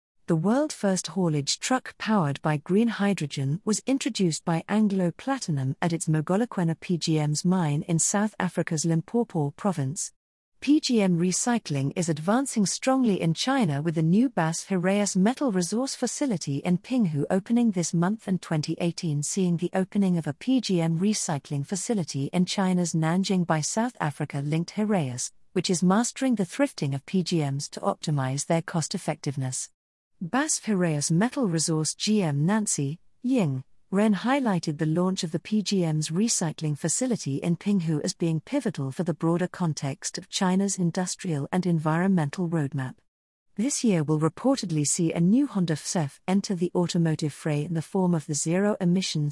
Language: English